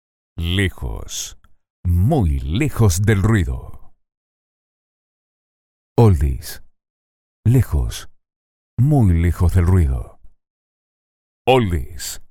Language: Spanish